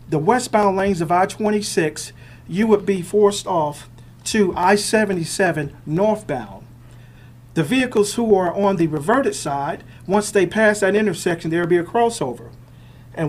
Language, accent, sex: English, American, male